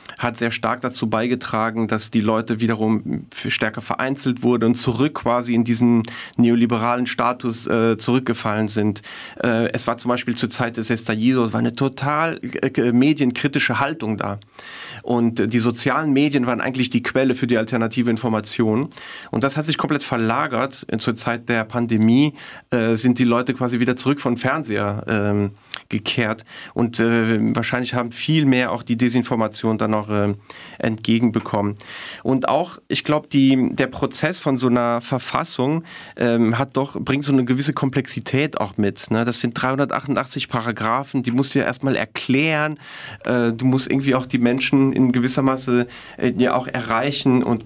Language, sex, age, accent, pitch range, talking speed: German, male, 40-59, German, 115-135 Hz, 165 wpm